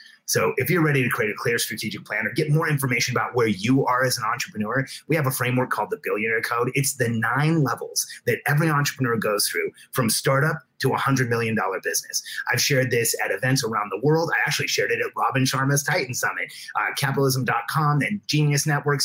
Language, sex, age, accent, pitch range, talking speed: English, male, 30-49, American, 125-155 Hz, 210 wpm